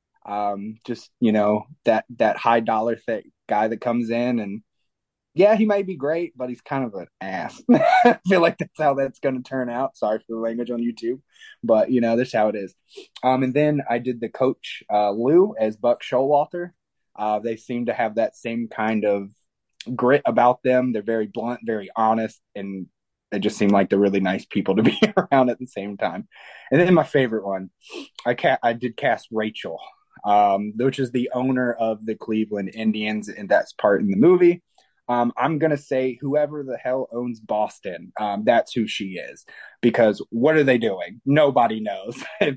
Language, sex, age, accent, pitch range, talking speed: English, male, 20-39, American, 110-145 Hz, 200 wpm